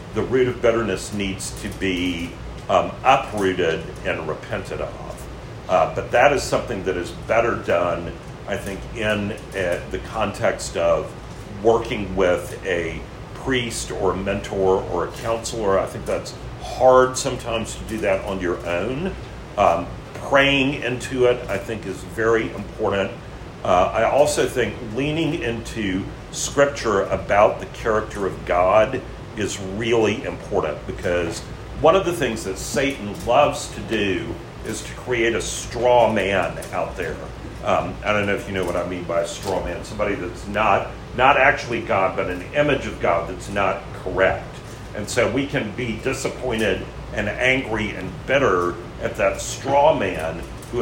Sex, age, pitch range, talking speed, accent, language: male, 50-69, 95-125 Hz, 160 wpm, American, English